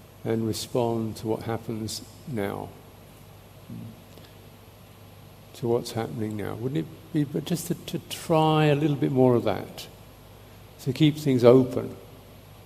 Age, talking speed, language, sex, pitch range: 50-69, 130 wpm, English, male, 110-130 Hz